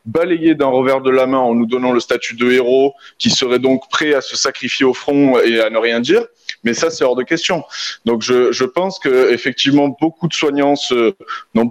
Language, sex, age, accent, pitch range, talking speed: French, male, 20-39, French, 125-165 Hz, 220 wpm